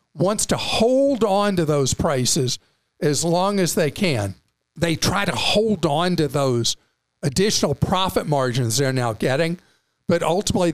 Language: English